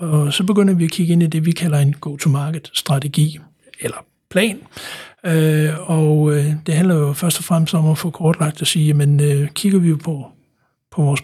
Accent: native